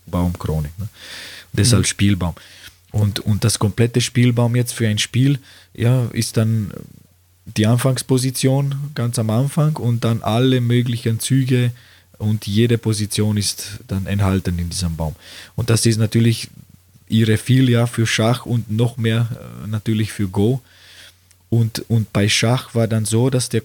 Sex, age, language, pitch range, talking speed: male, 20-39, German, 100-120 Hz, 145 wpm